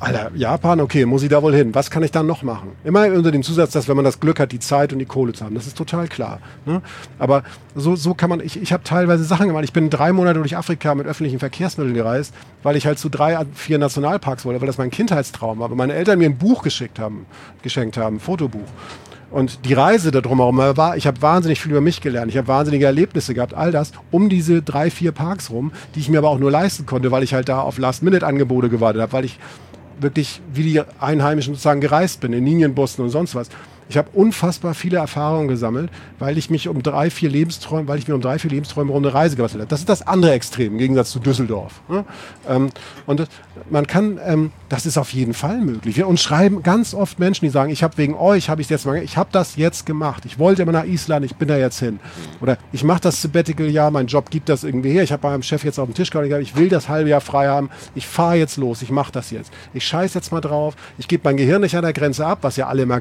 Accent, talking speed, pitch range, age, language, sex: German, 250 wpm, 130-165 Hz, 40-59, German, male